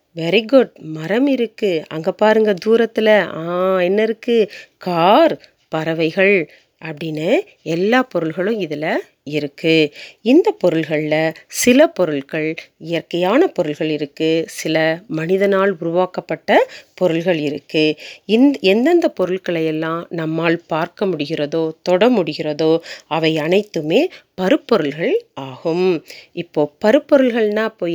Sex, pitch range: female, 160-225 Hz